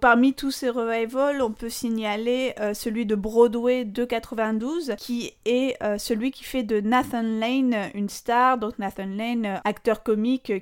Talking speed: 165 wpm